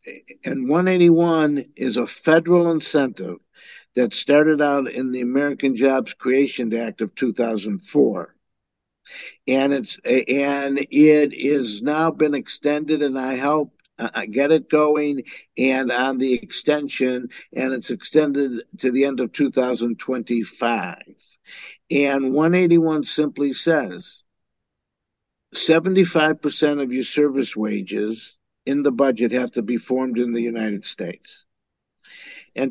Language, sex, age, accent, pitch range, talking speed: English, male, 60-79, American, 125-155 Hz, 115 wpm